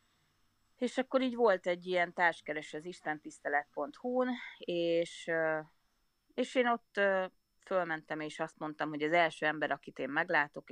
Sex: female